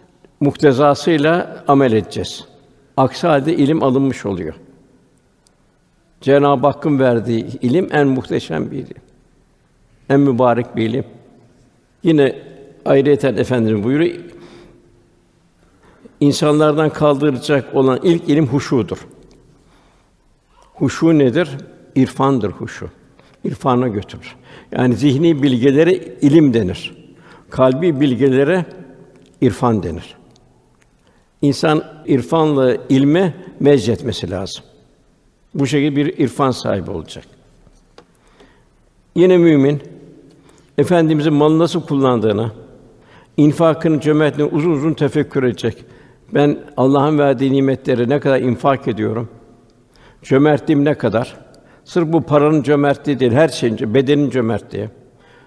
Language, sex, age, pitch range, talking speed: Turkish, male, 60-79, 125-150 Hz, 95 wpm